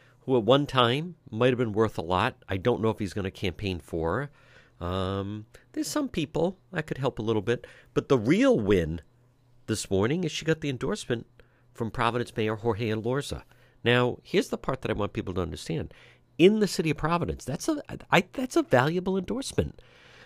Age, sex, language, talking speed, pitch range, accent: 50-69, male, English, 195 wpm, 105-140 Hz, American